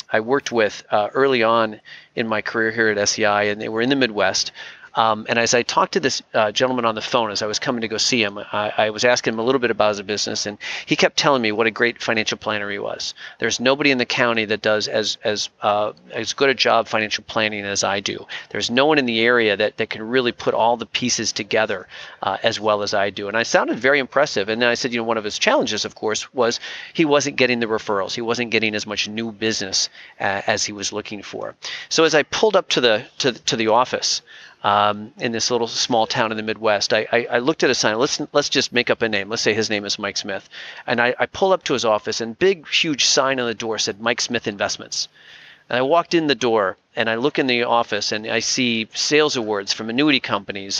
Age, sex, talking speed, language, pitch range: 40-59, male, 255 wpm, English, 105-125 Hz